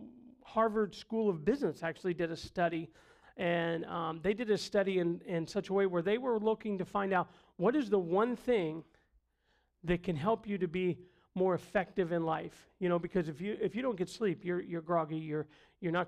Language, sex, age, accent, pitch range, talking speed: English, male, 40-59, American, 175-225 Hz, 215 wpm